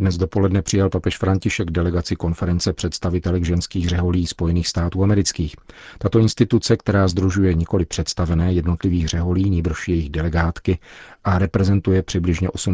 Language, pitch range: Czech, 85-95 Hz